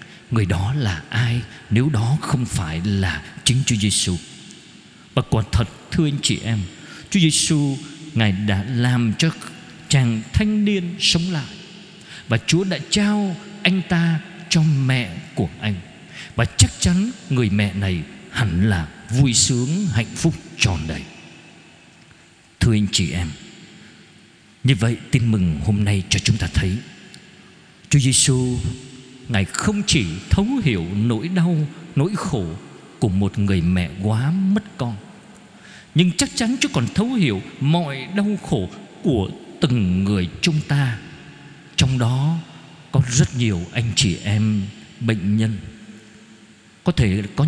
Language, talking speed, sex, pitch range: Vietnamese, 145 wpm, male, 105-170 Hz